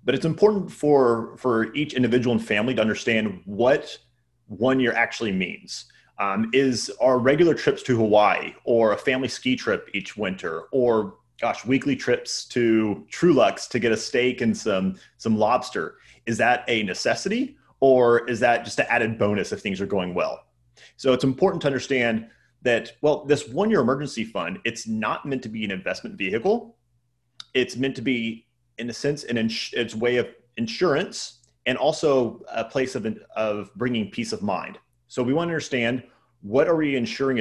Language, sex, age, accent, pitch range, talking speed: English, male, 30-49, American, 110-140 Hz, 180 wpm